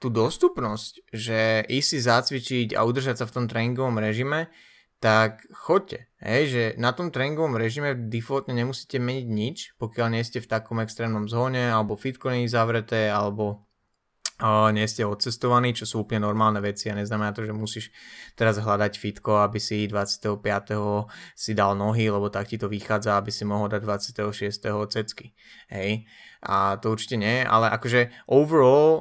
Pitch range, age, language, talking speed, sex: 105-125 Hz, 20-39, Slovak, 165 wpm, male